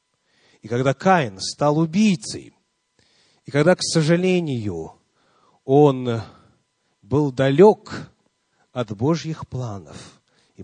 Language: English